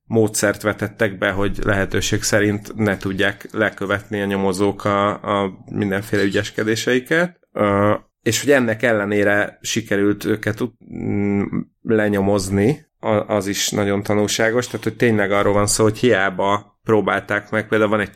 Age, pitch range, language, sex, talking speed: 30-49, 100-115 Hz, Hungarian, male, 130 wpm